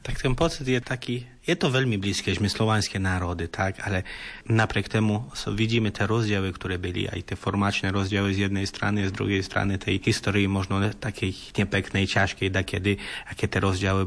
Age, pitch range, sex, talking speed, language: 30-49, 95-105 Hz, male, 185 wpm, Slovak